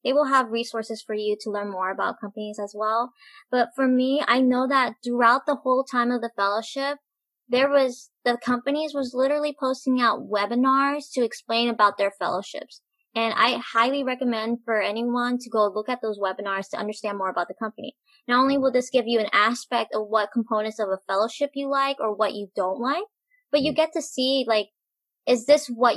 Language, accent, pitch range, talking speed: English, American, 215-270 Hz, 205 wpm